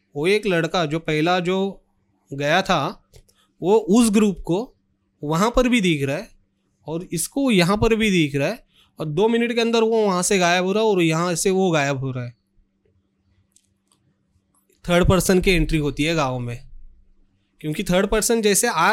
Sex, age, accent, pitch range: male, 30-49, native, 135-195 Hz